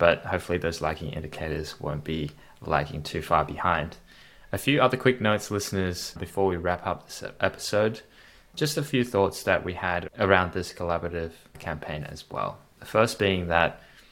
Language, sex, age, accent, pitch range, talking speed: English, male, 20-39, Australian, 85-95 Hz, 170 wpm